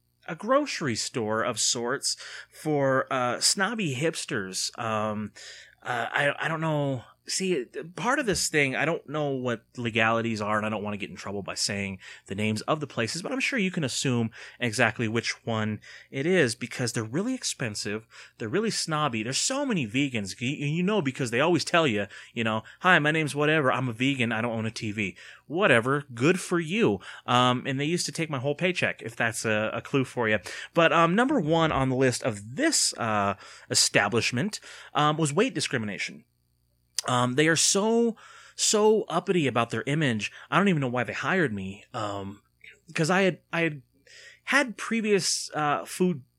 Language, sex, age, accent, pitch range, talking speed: English, male, 30-49, American, 110-160 Hz, 190 wpm